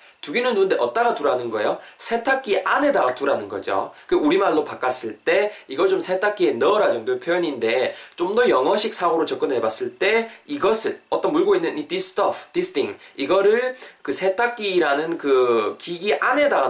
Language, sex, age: Korean, male, 20-39